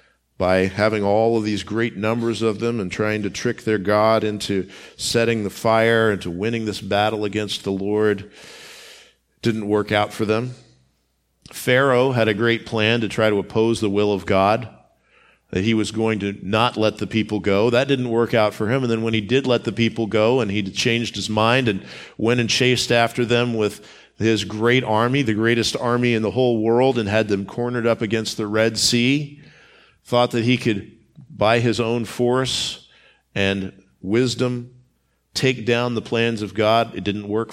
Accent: American